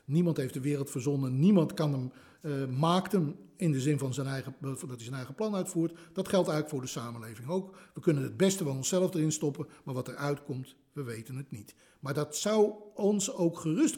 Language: Dutch